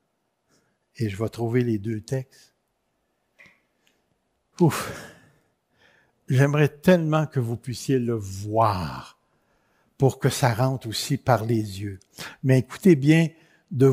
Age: 60-79